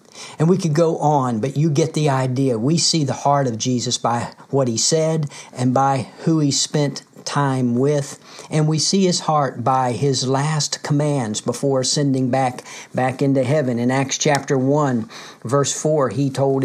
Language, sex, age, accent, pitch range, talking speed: English, male, 50-69, American, 130-155 Hz, 180 wpm